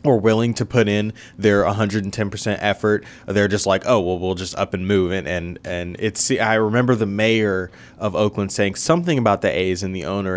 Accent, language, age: American, English, 20-39